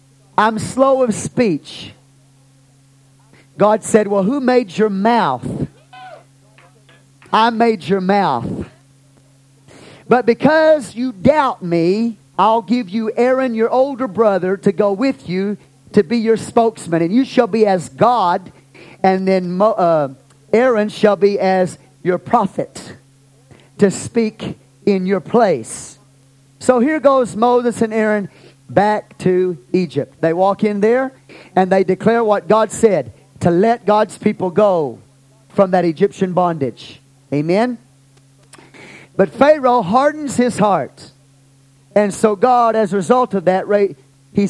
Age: 40-59